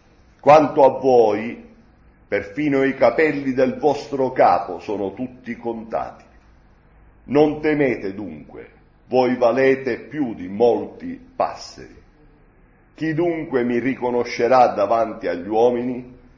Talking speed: 105 wpm